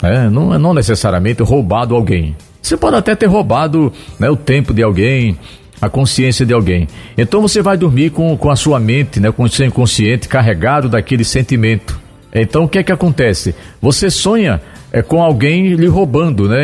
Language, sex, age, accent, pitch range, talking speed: Portuguese, male, 50-69, Brazilian, 115-180 Hz, 175 wpm